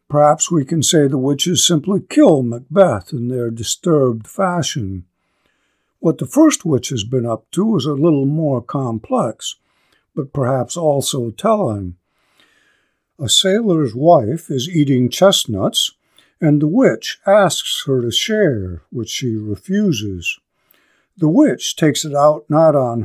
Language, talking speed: English, 140 wpm